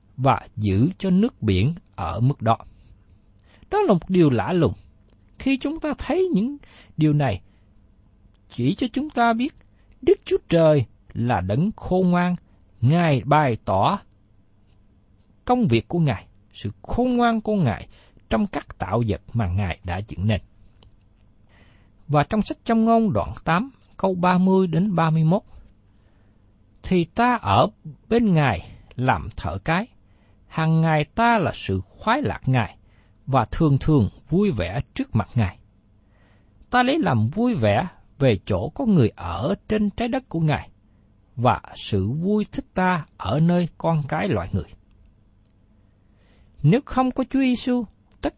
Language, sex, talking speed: Vietnamese, male, 150 wpm